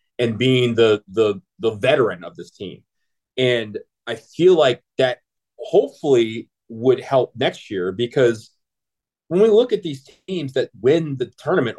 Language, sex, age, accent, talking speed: English, male, 30-49, American, 155 wpm